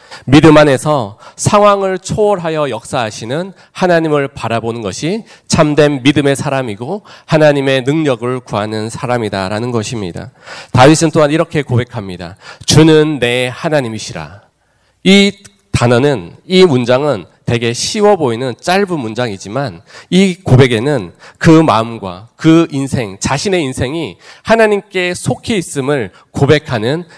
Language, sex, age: Korean, male, 40-59